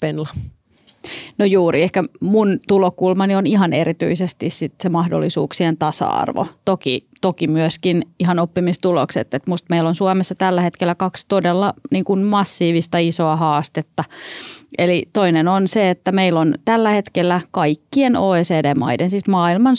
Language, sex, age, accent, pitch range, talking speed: Finnish, female, 30-49, native, 165-190 Hz, 130 wpm